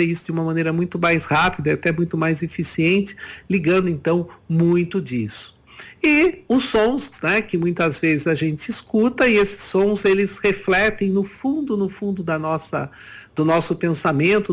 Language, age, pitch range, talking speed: Portuguese, 60-79, 165-200 Hz, 160 wpm